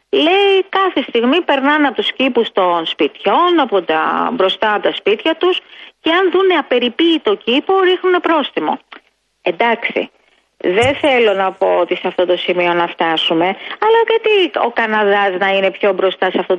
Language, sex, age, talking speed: Greek, female, 30-49, 165 wpm